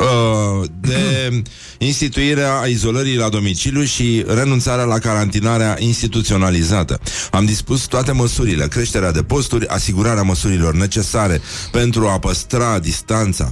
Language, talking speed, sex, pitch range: Romanian, 105 wpm, male, 90-115 Hz